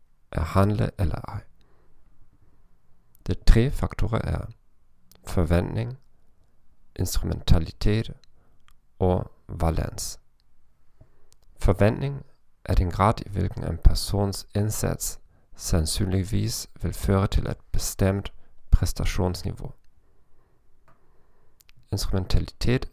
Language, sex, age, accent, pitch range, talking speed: Danish, male, 50-69, German, 85-110 Hz, 75 wpm